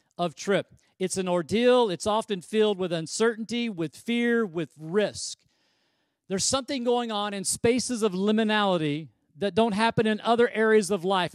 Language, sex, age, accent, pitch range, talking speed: English, male, 50-69, American, 185-225 Hz, 160 wpm